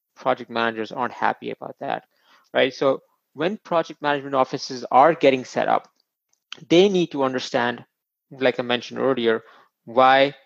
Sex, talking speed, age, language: male, 145 wpm, 20-39, English